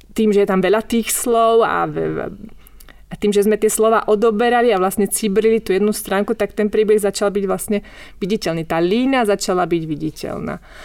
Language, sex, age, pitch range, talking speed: Slovak, female, 30-49, 175-210 Hz, 190 wpm